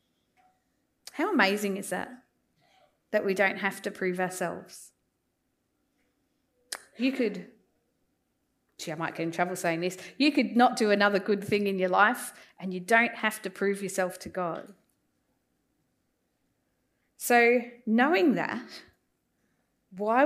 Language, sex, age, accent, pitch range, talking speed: English, female, 30-49, Australian, 190-240 Hz, 130 wpm